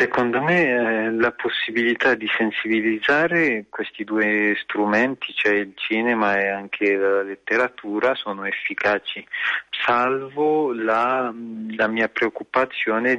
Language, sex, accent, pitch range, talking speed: Italian, male, native, 105-115 Hz, 110 wpm